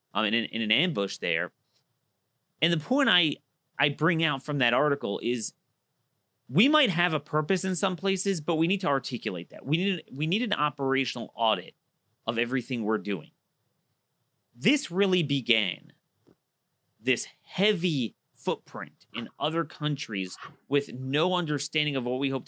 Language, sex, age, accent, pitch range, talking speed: English, male, 30-49, American, 130-170 Hz, 155 wpm